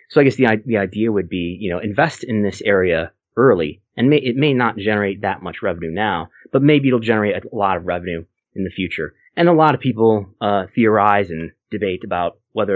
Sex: male